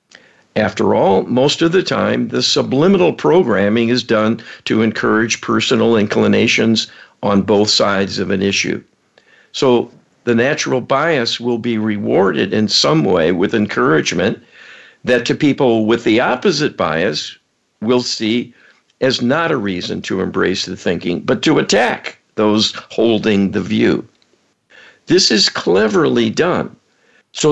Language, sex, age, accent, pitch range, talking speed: English, male, 50-69, American, 110-140 Hz, 135 wpm